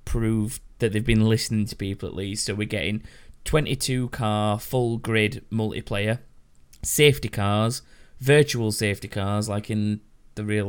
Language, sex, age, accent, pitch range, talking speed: English, male, 20-39, British, 100-110 Hz, 145 wpm